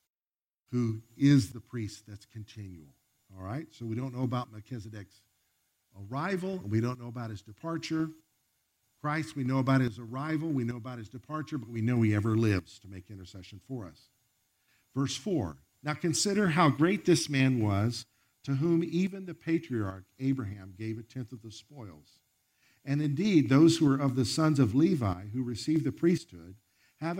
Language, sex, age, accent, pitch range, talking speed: English, male, 50-69, American, 110-150 Hz, 175 wpm